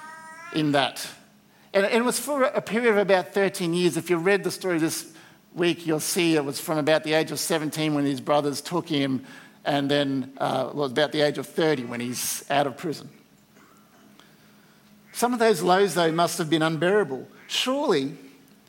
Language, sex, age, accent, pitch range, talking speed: English, male, 50-69, Australian, 155-205 Hz, 185 wpm